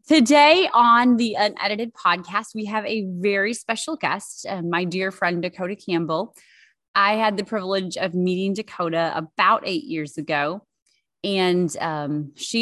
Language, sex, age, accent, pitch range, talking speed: English, female, 20-39, American, 170-205 Hz, 145 wpm